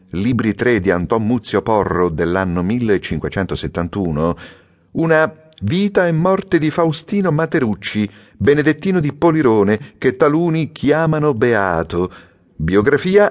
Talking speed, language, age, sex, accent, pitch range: 105 wpm, Italian, 40-59, male, native, 85-135 Hz